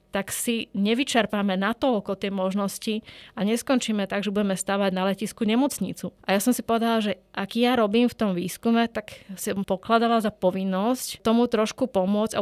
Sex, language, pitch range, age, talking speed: female, Slovak, 190-230 Hz, 20-39, 180 wpm